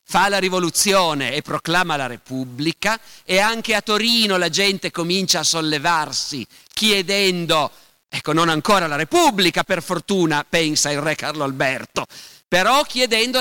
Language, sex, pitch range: Italian, male, 145-195 Hz